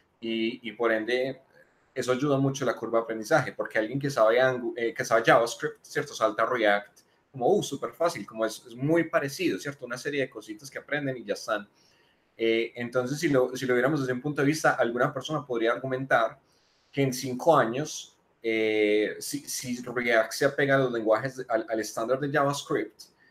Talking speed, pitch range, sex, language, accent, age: 195 wpm, 115-140 Hz, male, Spanish, Colombian, 20-39